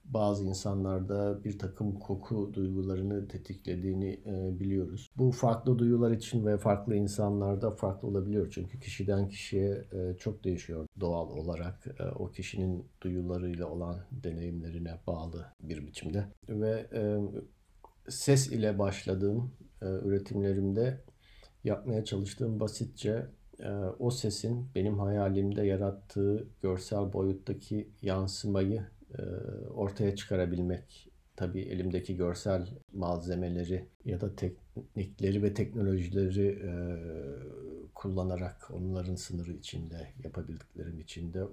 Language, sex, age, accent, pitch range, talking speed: Turkish, male, 50-69, native, 90-110 Hz, 95 wpm